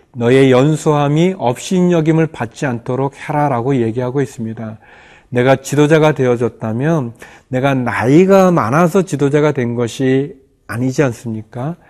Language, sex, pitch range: Korean, male, 115-150 Hz